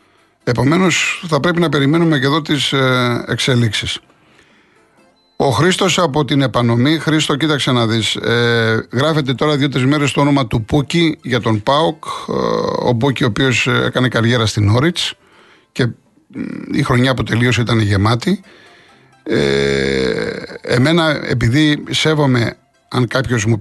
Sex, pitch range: male, 115-150 Hz